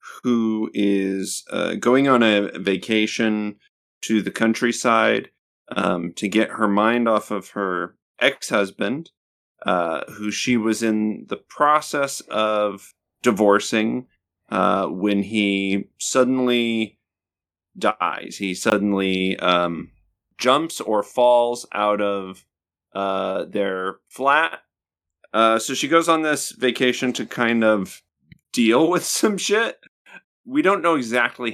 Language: English